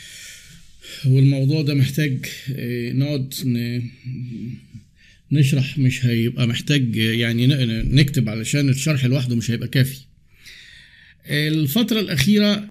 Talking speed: 85 wpm